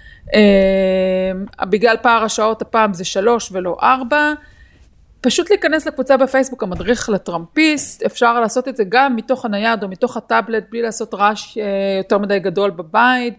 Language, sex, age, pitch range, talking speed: Hebrew, female, 30-49, 200-255 Hz, 145 wpm